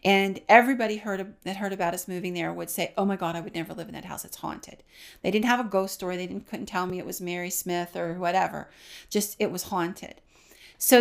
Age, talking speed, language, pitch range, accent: 40-59, 245 wpm, English, 180-205 Hz, American